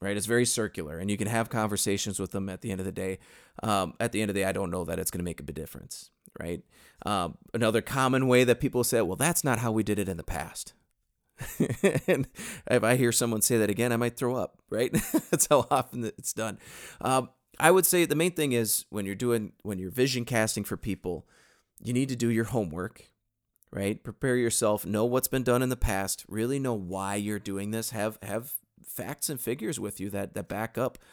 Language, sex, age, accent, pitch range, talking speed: English, male, 30-49, American, 100-125 Hz, 235 wpm